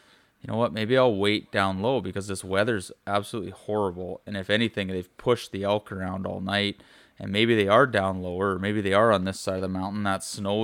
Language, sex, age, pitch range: English, male, 20-39, 95-110 Hz